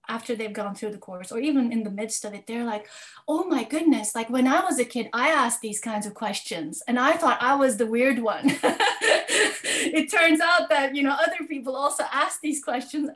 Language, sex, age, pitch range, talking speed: English, female, 30-49, 210-300 Hz, 230 wpm